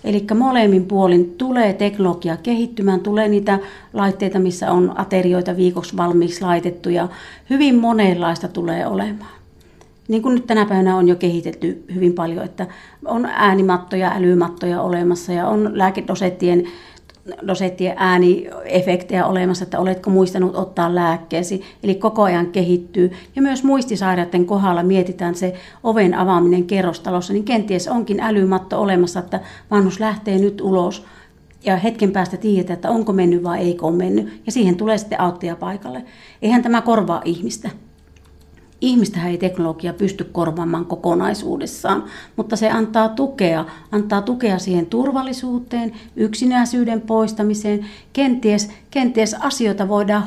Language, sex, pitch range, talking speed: Finnish, female, 180-215 Hz, 130 wpm